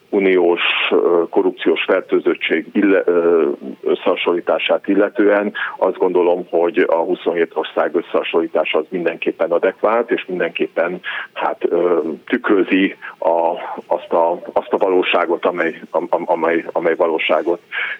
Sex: male